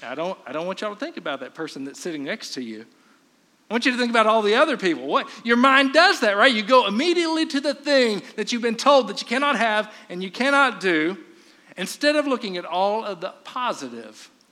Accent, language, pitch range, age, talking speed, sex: American, English, 170-275 Hz, 50-69, 240 wpm, male